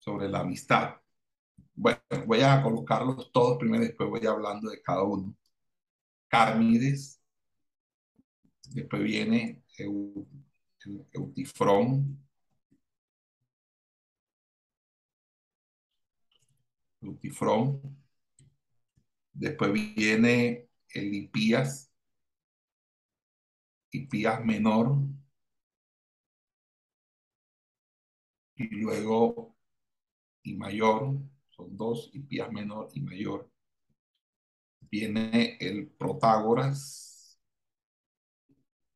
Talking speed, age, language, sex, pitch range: 65 wpm, 60-79, Spanish, male, 105-135 Hz